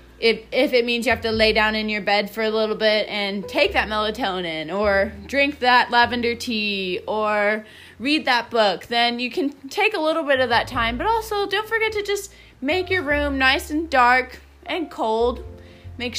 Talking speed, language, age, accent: 200 wpm, English, 20-39, American